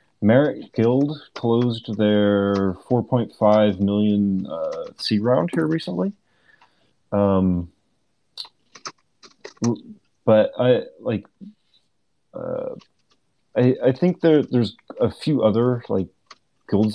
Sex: male